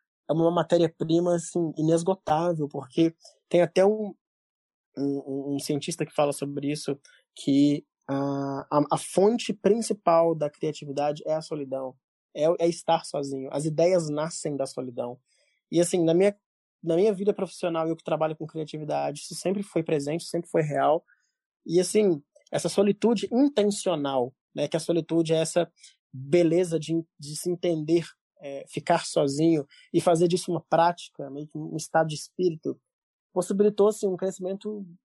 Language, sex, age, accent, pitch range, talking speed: Portuguese, male, 20-39, Brazilian, 150-175 Hz, 155 wpm